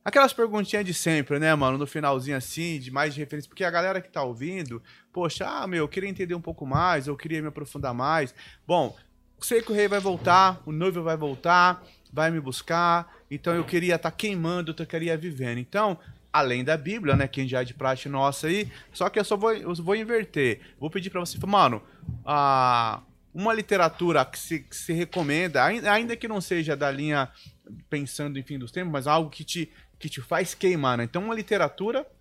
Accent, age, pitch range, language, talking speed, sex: Brazilian, 20-39, 140-185 Hz, Portuguese, 210 wpm, male